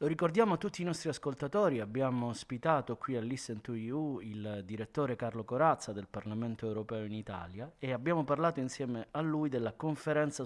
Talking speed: 180 wpm